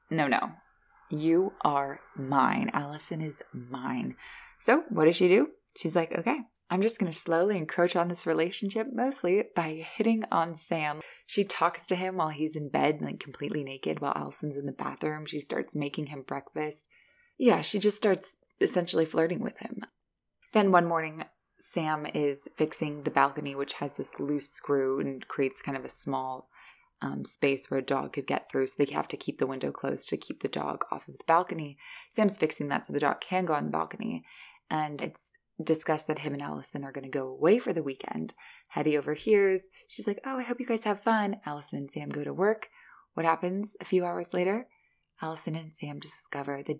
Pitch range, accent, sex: 145-190 Hz, American, female